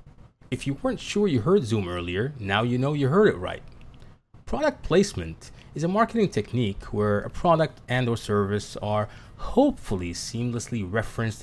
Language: English